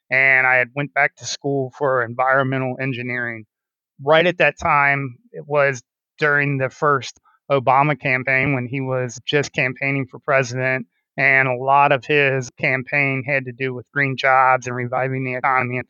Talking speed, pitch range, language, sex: 170 wpm, 130-150 Hz, English, male